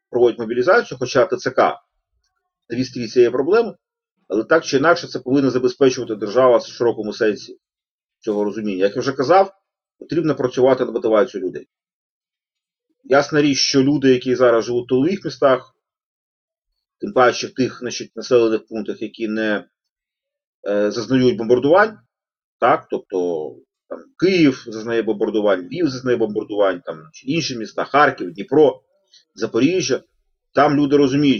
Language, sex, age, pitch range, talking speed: Ukrainian, male, 40-59, 120-185 Hz, 135 wpm